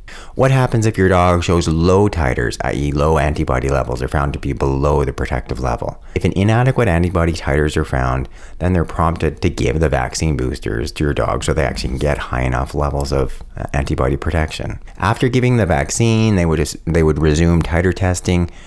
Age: 30-49